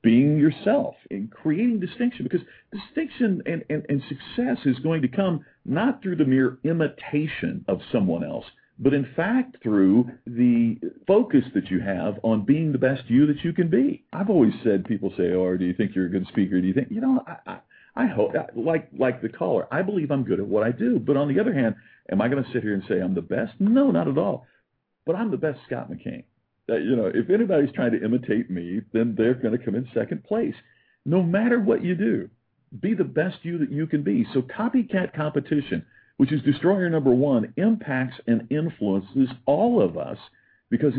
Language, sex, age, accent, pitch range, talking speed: English, male, 50-69, American, 120-185 Hz, 210 wpm